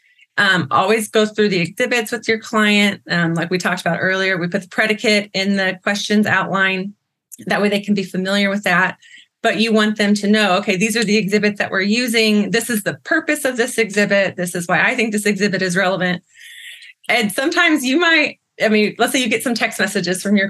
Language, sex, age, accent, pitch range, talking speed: English, female, 30-49, American, 190-230 Hz, 225 wpm